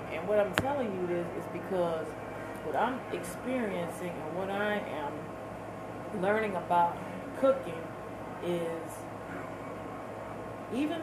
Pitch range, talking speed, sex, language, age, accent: 175-215 Hz, 110 wpm, female, English, 30-49, American